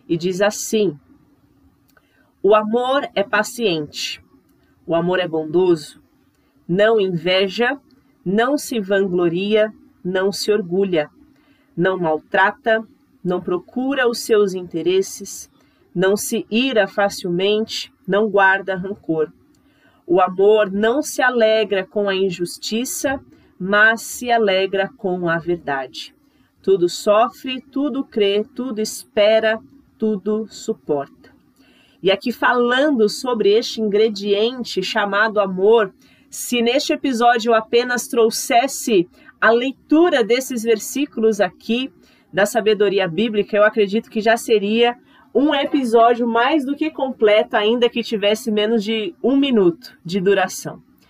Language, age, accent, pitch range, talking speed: Portuguese, 40-59, Brazilian, 195-245 Hz, 115 wpm